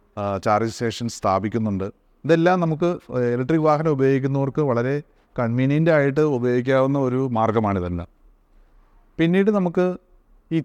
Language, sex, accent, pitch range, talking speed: Malayalam, male, native, 115-150 Hz, 100 wpm